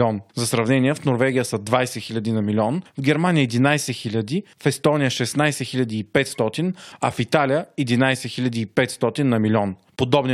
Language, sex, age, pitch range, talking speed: Bulgarian, male, 30-49, 125-150 Hz, 145 wpm